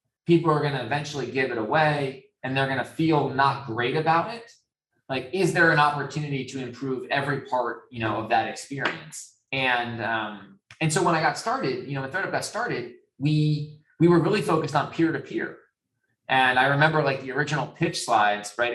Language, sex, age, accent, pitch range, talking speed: English, male, 20-39, American, 120-150 Hz, 200 wpm